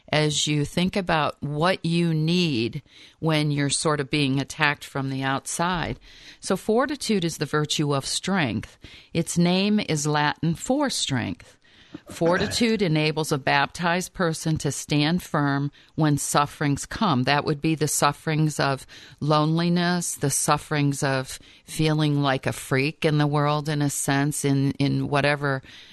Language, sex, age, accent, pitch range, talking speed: English, female, 50-69, American, 135-165 Hz, 145 wpm